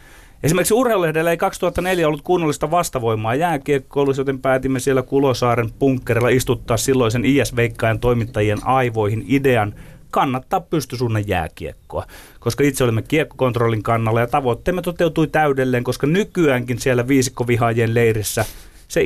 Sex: male